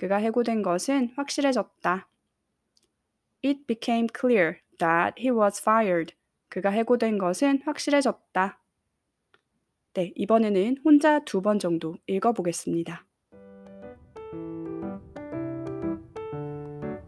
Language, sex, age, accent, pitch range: Korean, female, 20-39, native, 175-255 Hz